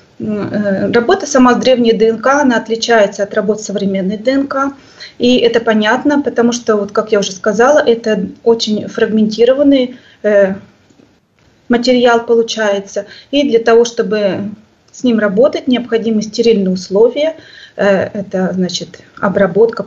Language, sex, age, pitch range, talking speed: Russian, female, 20-39, 205-245 Hz, 115 wpm